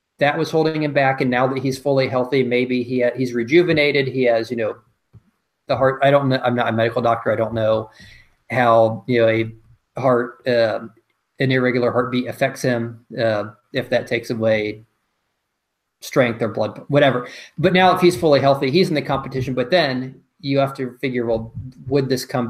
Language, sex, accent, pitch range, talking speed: English, male, American, 120-145 Hz, 195 wpm